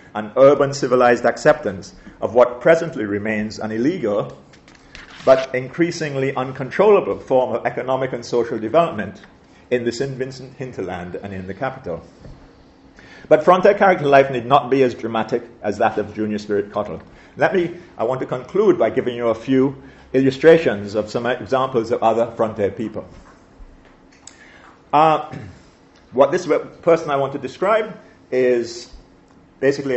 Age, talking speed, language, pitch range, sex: 40-59, 145 wpm, English, 110-145 Hz, male